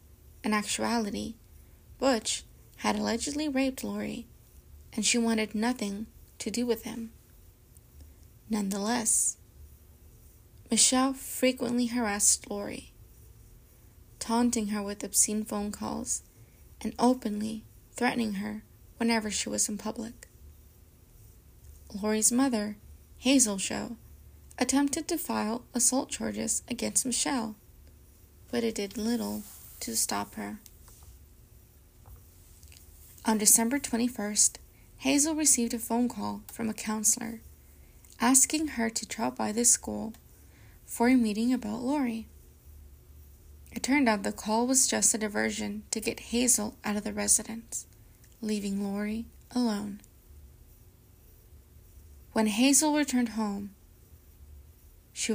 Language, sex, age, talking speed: English, female, 20-39, 110 wpm